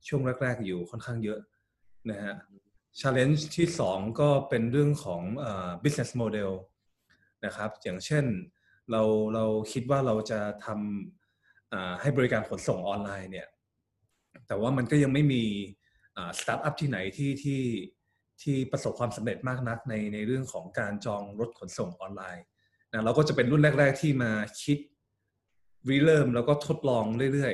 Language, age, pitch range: Thai, 20-39, 105-135 Hz